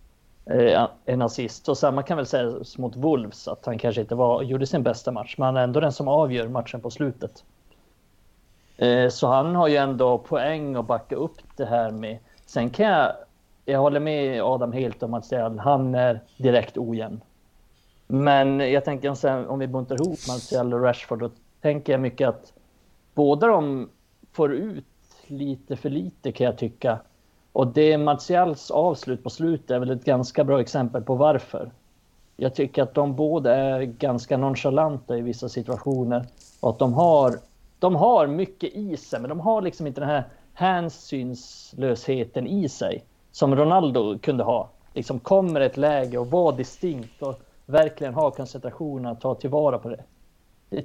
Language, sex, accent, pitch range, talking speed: Swedish, male, native, 125-150 Hz, 175 wpm